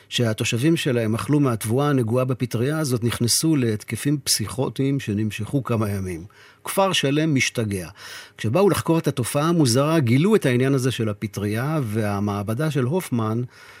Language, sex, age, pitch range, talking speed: Hebrew, male, 50-69, 110-140 Hz, 130 wpm